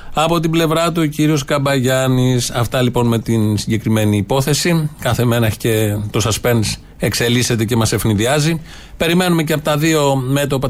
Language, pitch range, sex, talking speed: Greek, 125-160 Hz, male, 155 wpm